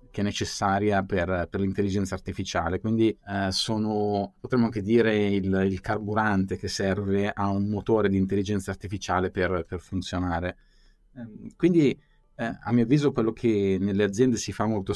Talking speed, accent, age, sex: 155 wpm, native, 30-49, male